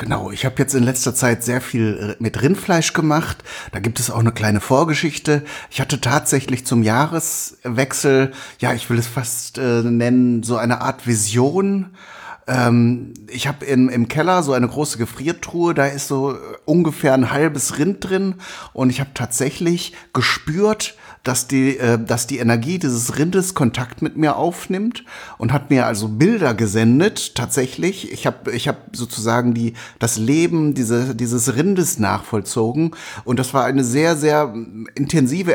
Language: German